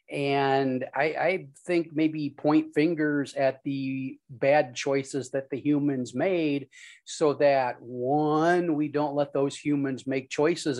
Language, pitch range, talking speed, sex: English, 130-150 Hz, 140 wpm, male